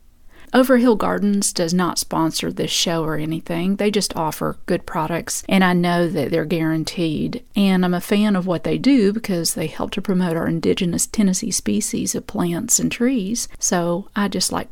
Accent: American